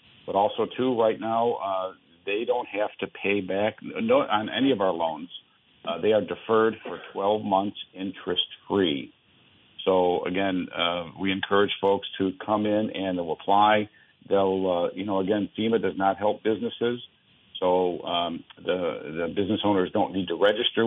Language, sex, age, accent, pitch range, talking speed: English, male, 50-69, American, 90-105 Hz, 170 wpm